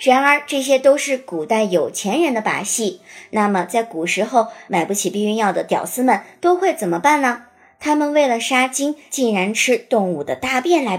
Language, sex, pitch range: Chinese, male, 205-300 Hz